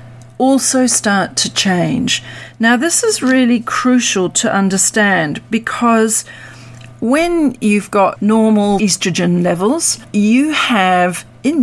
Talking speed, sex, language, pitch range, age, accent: 110 wpm, female, English, 165-215 Hz, 40-59, Australian